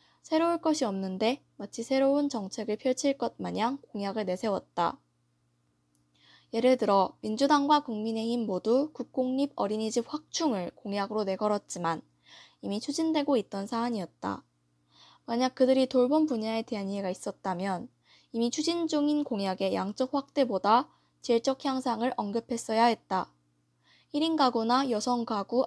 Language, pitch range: Korean, 190-260 Hz